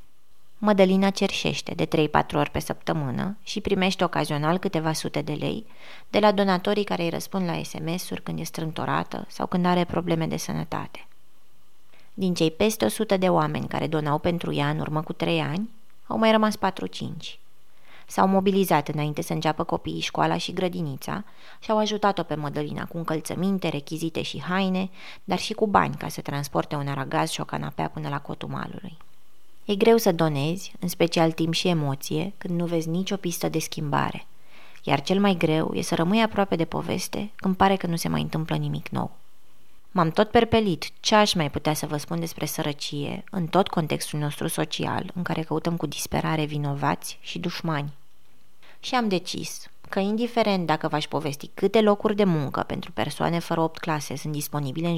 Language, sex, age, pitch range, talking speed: Romanian, female, 20-39, 155-195 Hz, 180 wpm